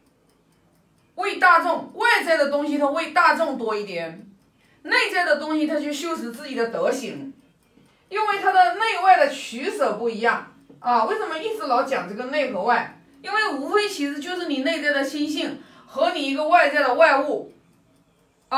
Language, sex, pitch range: Chinese, female, 255-340 Hz